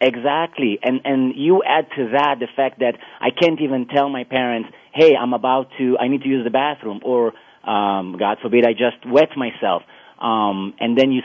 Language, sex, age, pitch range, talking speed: English, male, 30-49, 120-145 Hz, 205 wpm